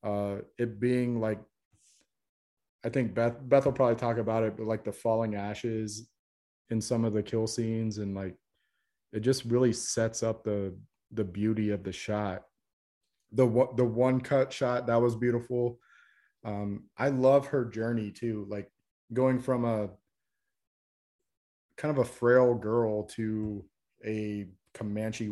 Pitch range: 105-125 Hz